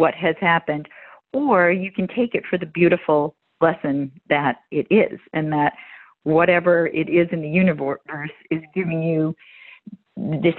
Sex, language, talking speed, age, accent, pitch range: female, English, 155 wpm, 50-69, American, 155-185 Hz